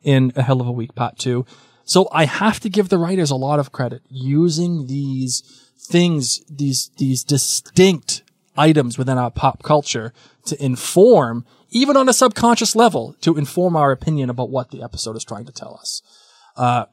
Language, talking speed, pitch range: English, 180 wpm, 125-155 Hz